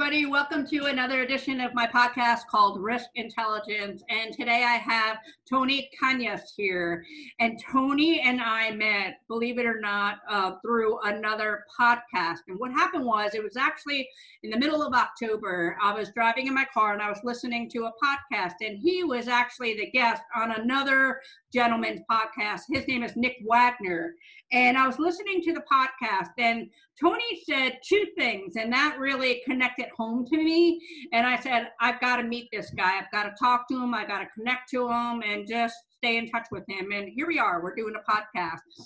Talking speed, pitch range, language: 195 wpm, 220-280 Hz, English